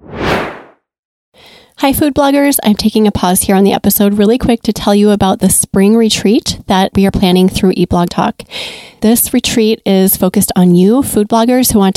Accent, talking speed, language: American, 180 wpm, English